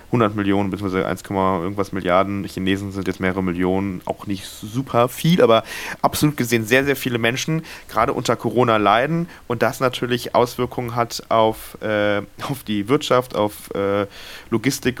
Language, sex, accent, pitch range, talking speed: German, male, German, 100-120 Hz, 155 wpm